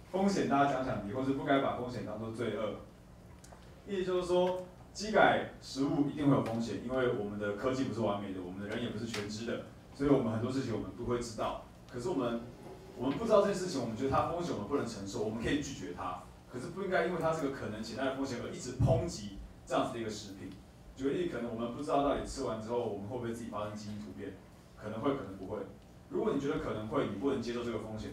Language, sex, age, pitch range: Chinese, male, 20-39, 105-140 Hz